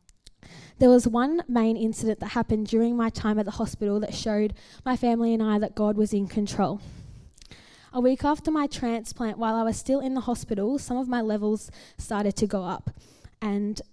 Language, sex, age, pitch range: English, female, 10-29, 205-235 Hz